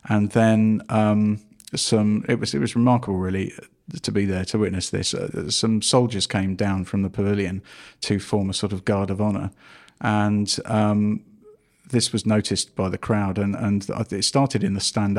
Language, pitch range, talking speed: English, 100-115 Hz, 185 wpm